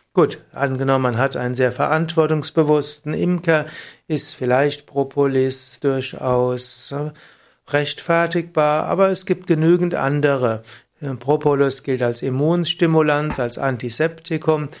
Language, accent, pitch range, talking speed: German, German, 130-165 Hz, 95 wpm